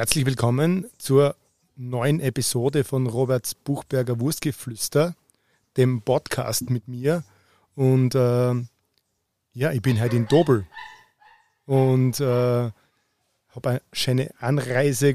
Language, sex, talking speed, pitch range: German, male, 105 wpm, 125-150 Hz